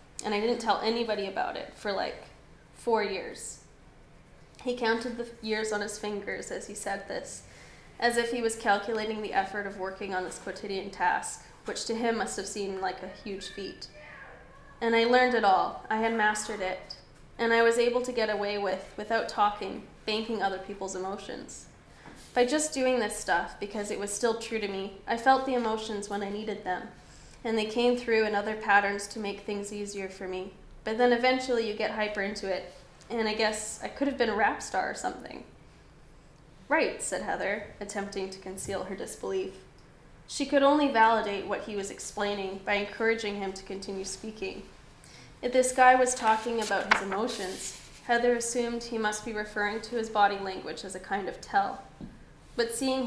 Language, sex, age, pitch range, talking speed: English, female, 10-29, 200-230 Hz, 190 wpm